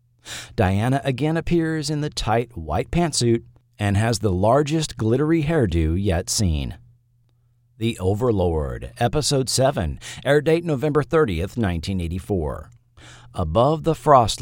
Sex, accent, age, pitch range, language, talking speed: male, American, 40-59, 95-145 Hz, English, 115 wpm